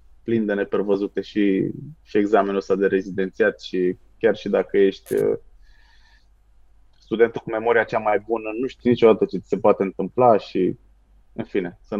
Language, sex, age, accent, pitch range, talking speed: Romanian, male, 20-39, native, 100-130 Hz, 155 wpm